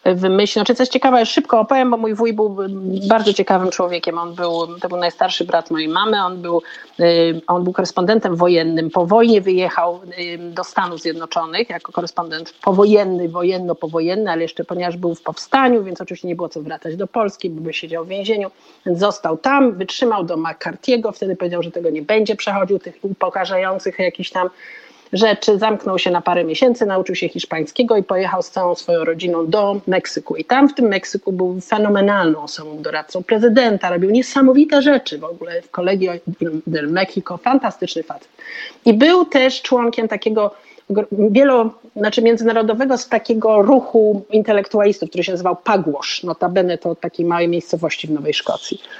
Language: Polish